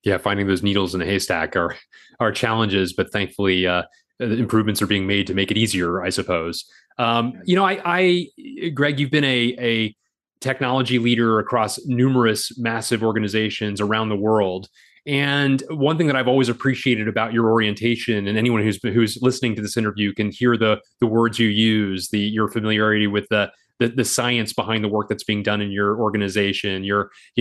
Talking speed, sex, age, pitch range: 190 wpm, male, 30-49, 105-120 Hz